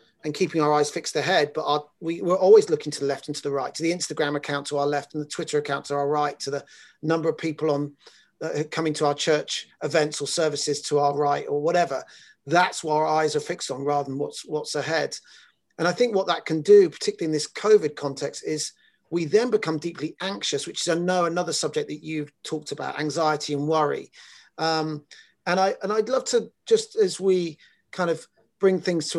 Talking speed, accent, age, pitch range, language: 225 wpm, British, 40-59, 150-185 Hz, English